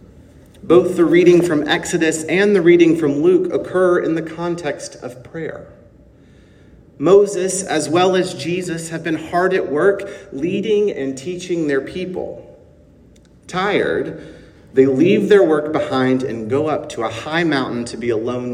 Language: English